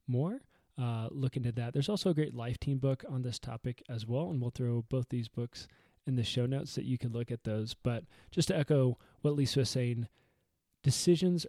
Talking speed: 220 wpm